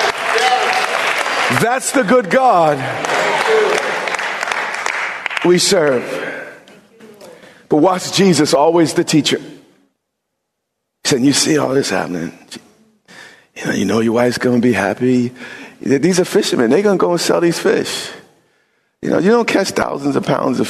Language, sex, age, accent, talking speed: English, male, 50-69, American, 140 wpm